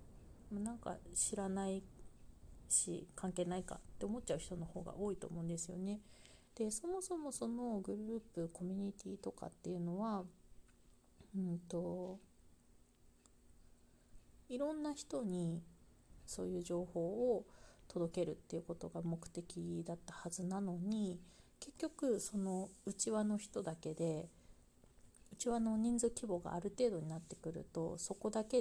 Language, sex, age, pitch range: Japanese, female, 40-59, 170-215 Hz